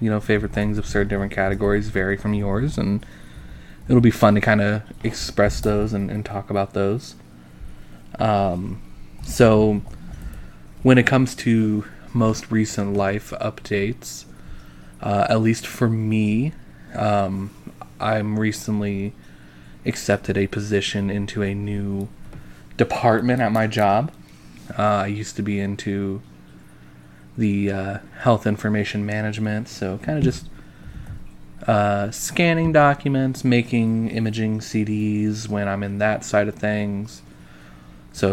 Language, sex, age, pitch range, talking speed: English, male, 20-39, 95-110 Hz, 130 wpm